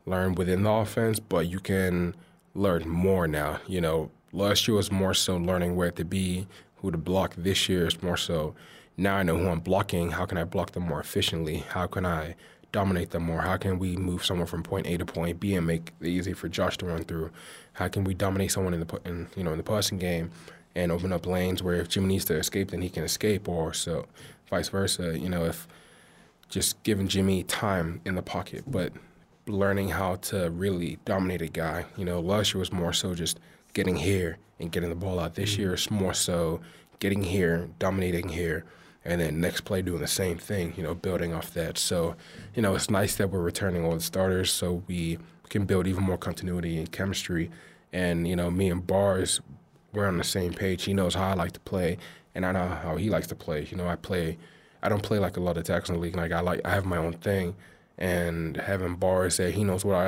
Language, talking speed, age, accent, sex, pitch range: English, 225 wpm, 20-39, American, male, 85-95 Hz